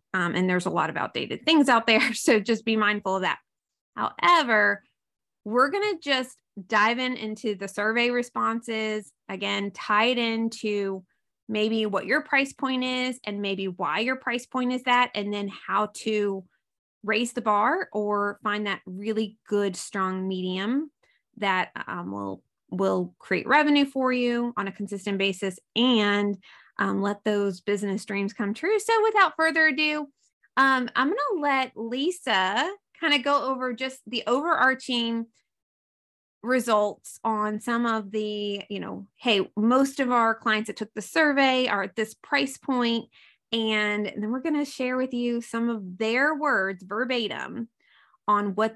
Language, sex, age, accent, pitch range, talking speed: English, female, 20-39, American, 205-260 Hz, 160 wpm